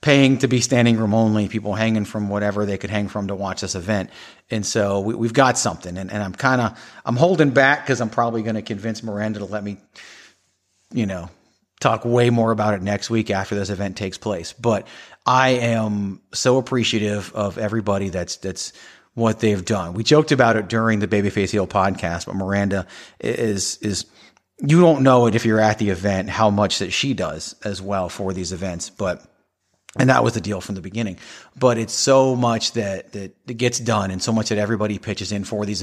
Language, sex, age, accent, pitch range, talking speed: English, male, 30-49, American, 100-120 Hz, 215 wpm